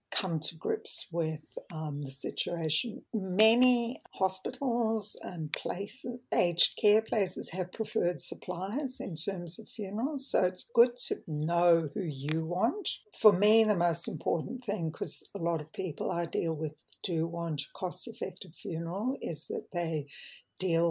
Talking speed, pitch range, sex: 150 wpm, 160-205 Hz, female